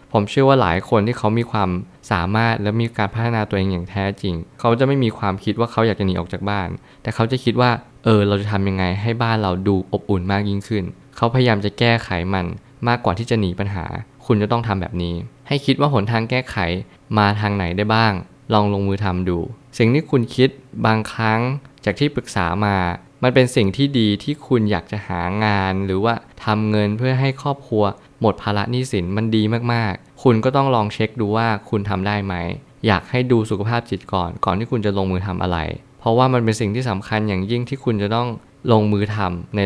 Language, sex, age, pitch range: Thai, male, 20-39, 100-120 Hz